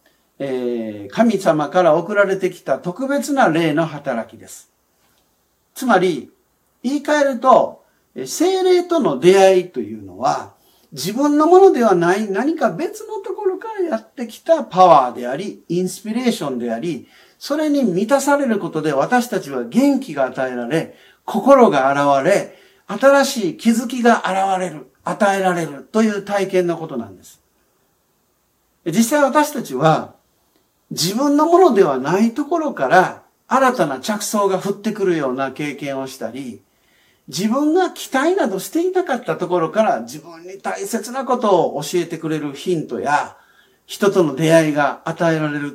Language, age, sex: Japanese, 50-69, male